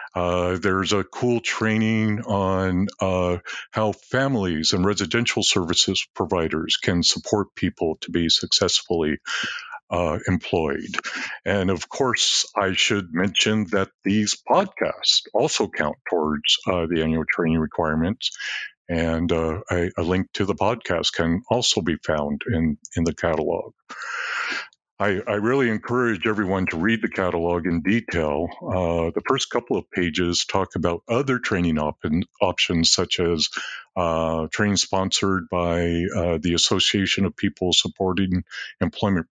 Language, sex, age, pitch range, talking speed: English, male, 50-69, 85-100 Hz, 135 wpm